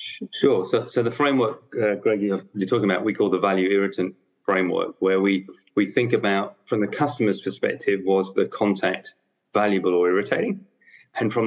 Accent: British